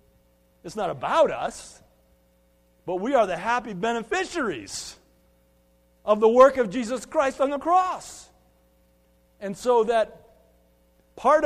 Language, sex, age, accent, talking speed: English, male, 50-69, American, 120 wpm